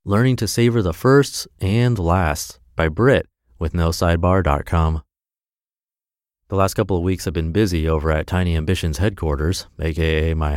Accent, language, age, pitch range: American, English, 30-49, 80-110 Hz